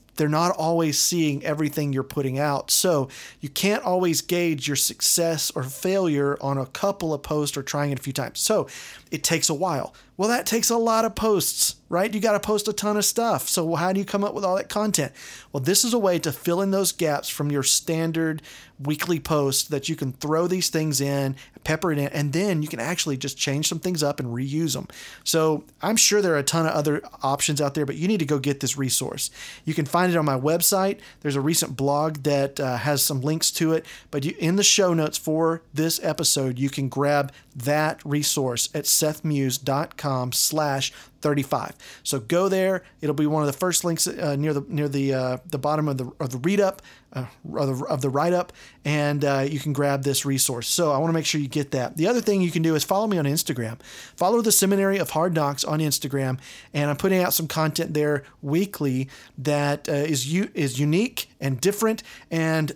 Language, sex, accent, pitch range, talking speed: English, male, American, 140-175 Hz, 225 wpm